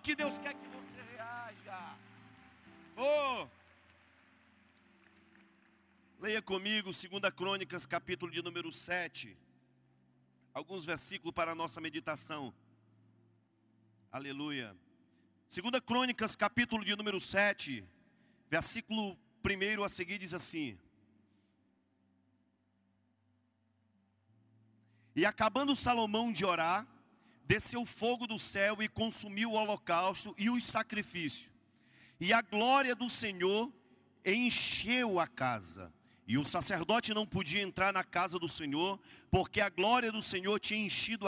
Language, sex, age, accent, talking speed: Portuguese, male, 40-59, Brazilian, 110 wpm